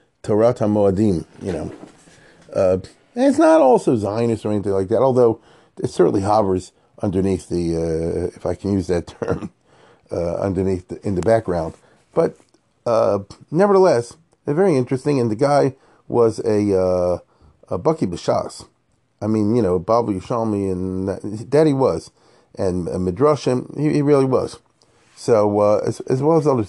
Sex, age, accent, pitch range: male, 40-59, American, 95-125 Hz